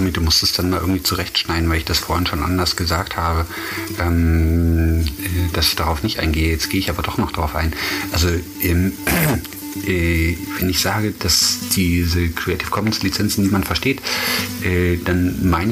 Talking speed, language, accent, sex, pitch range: 170 wpm, German, German, male, 85-100 Hz